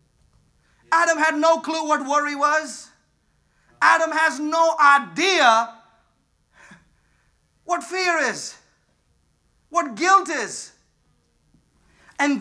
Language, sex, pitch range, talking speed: English, male, 200-315 Hz, 85 wpm